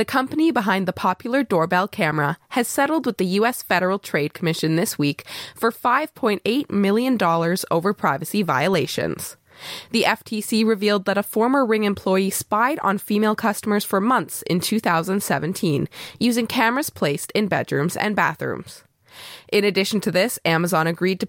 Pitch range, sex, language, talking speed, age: 175-235 Hz, female, English, 150 wpm, 20-39